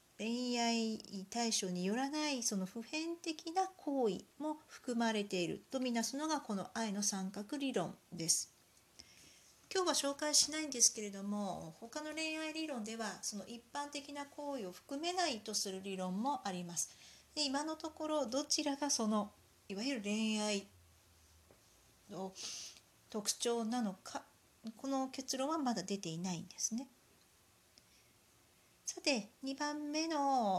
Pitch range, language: 195-275 Hz, Japanese